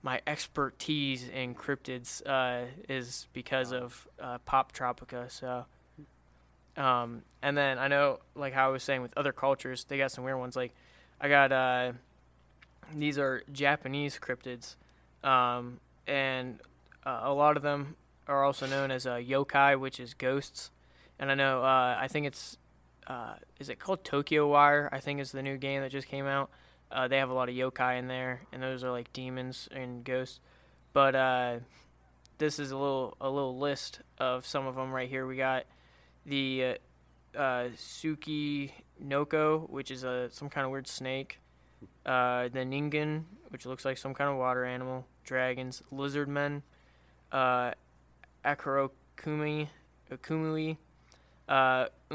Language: English